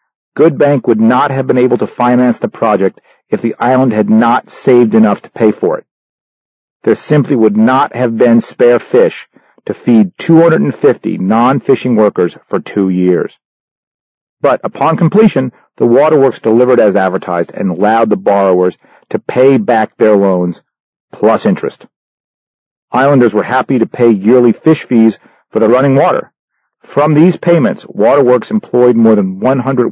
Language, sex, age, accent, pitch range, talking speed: English, male, 40-59, American, 105-135 Hz, 155 wpm